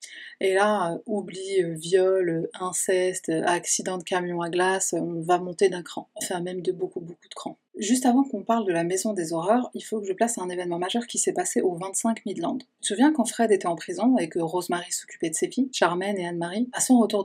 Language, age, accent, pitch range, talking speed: French, 30-49, French, 180-235 Hz, 230 wpm